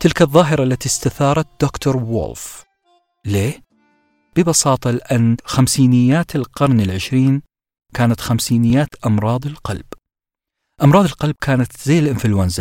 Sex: male